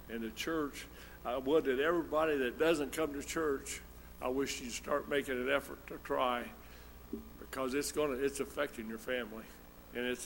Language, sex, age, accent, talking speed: English, male, 60-79, American, 175 wpm